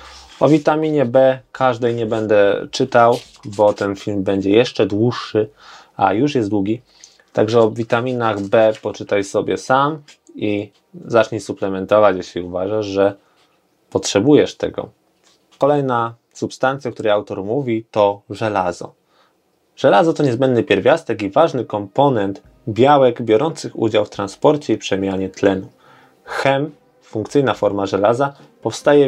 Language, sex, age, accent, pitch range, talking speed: Polish, male, 20-39, native, 105-140 Hz, 125 wpm